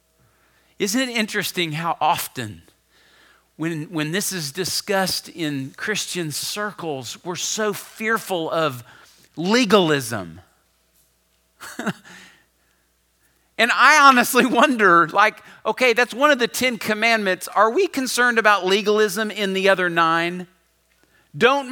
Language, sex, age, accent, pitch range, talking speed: English, male, 50-69, American, 165-245 Hz, 110 wpm